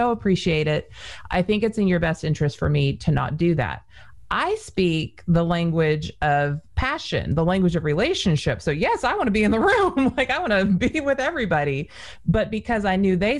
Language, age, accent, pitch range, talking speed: English, 30-49, American, 150-185 Hz, 205 wpm